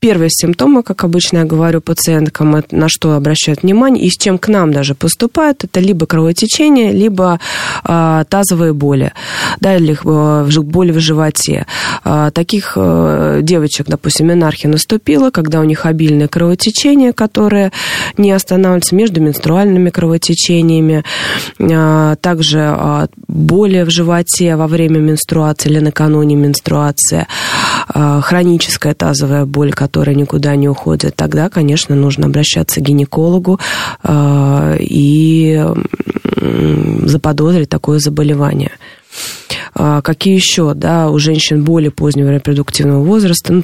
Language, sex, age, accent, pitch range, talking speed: Russian, female, 20-39, native, 145-175 Hz, 120 wpm